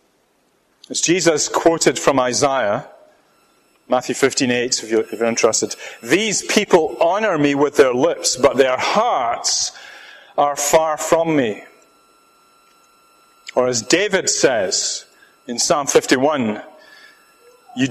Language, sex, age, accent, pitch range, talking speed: English, male, 40-59, British, 130-185 Hz, 115 wpm